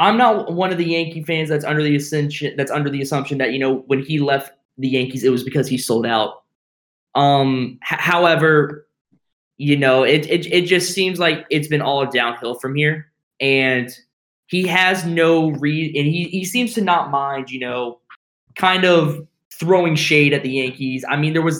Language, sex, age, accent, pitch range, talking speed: English, male, 20-39, American, 130-170 Hz, 195 wpm